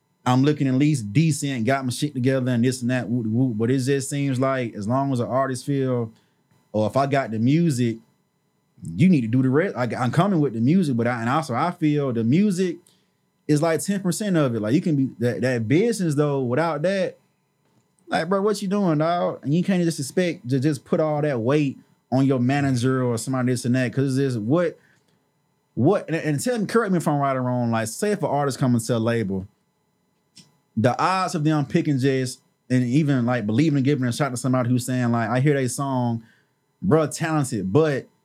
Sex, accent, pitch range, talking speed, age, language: male, American, 125-150 Hz, 225 wpm, 20-39, English